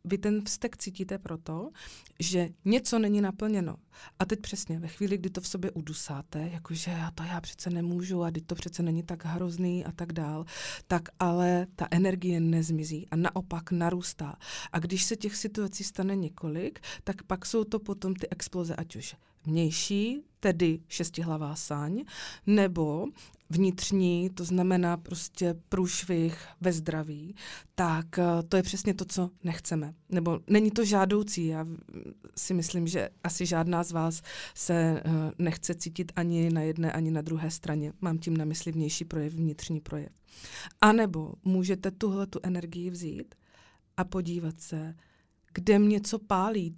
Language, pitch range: Czech, 165-195 Hz